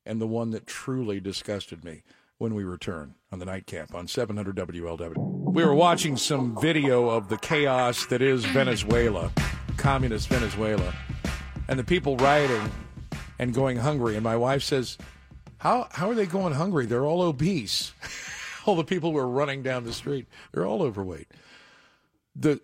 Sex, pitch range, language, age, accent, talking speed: male, 110-145 Hz, English, 50-69, American, 165 wpm